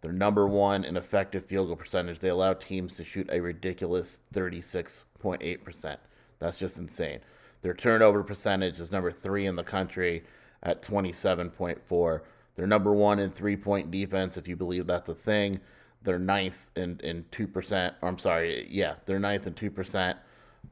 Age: 30-49